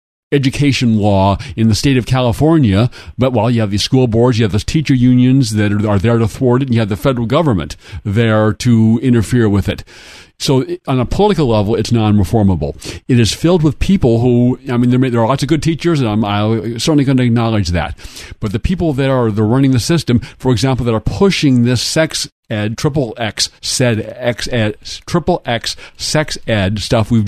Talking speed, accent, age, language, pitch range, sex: 210 wpm, American, 50-69, English, 110-140 Hz, male